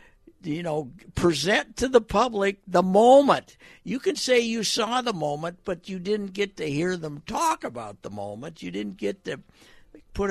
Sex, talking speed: male, 180 wpm